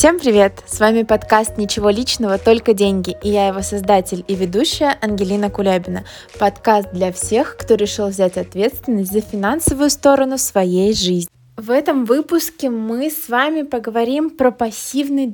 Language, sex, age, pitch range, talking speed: Russian, female, 20-39, 210-280 Hz, 150 wpm